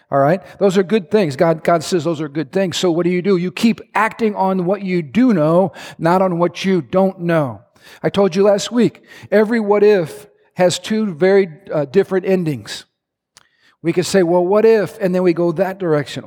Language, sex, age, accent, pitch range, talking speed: English, male, 50-69, American, 170-205 Hz, 215 wpm